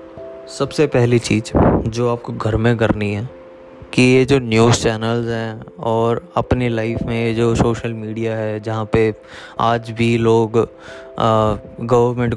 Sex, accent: male, native